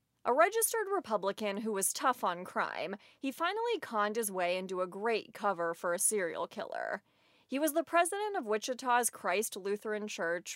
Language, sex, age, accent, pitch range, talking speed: English, female, 30-49, American, 190-265 Hz, 170 wpm